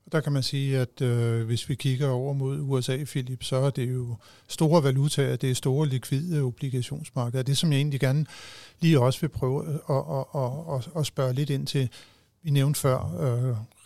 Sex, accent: male, native